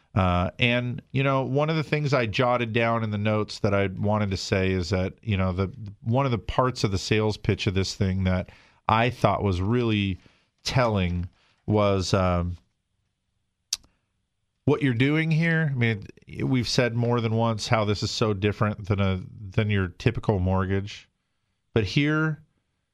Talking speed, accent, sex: 175 wpm, American, male